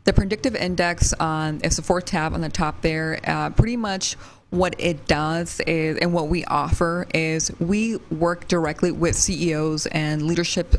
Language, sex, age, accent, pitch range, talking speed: Spanish, female, 20-39, American, 155-175 Hz, 170 wpm